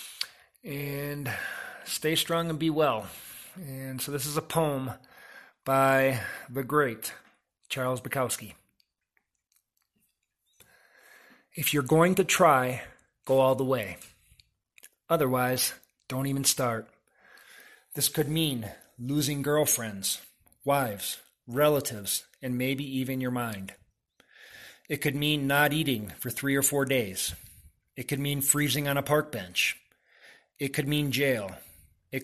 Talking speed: 120 wpm